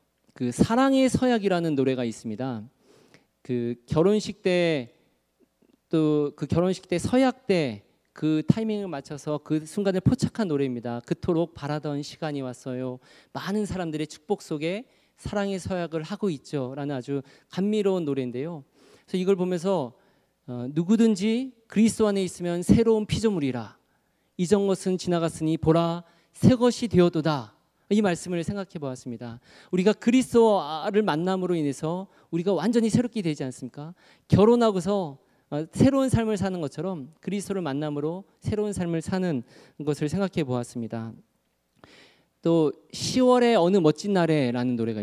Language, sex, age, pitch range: Korean, male, 40-59, 140-195 Hz